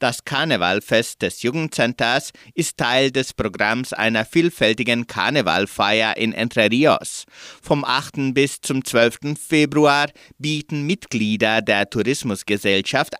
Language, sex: German, male